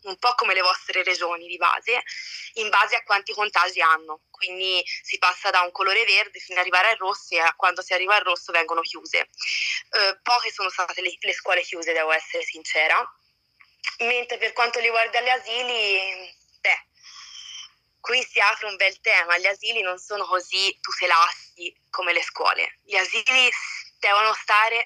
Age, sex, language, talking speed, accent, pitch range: 20-39, female, Italian, 175 wpm, native, 180-230 Hz